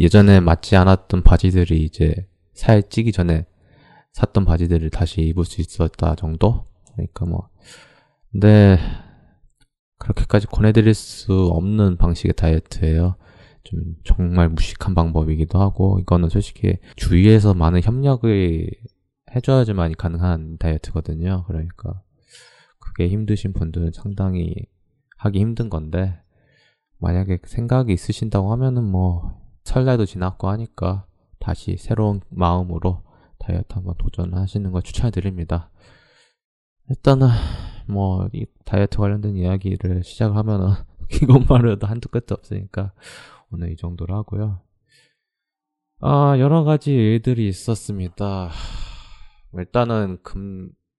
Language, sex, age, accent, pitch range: Korean, male, 20-39, native, 85-110 Hz